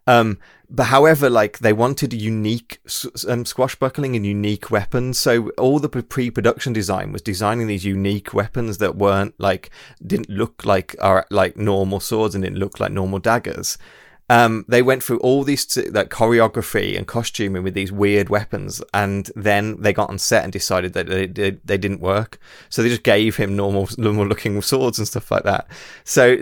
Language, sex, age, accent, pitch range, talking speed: English, male, 20-39, British, 100-120 Hz, 185 wpm